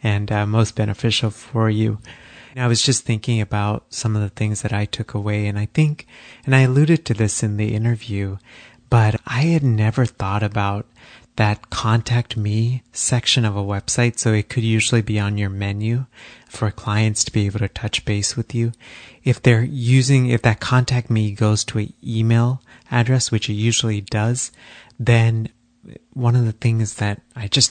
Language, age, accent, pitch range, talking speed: English, 30-49, American, 105-120 Hz, 185 wpm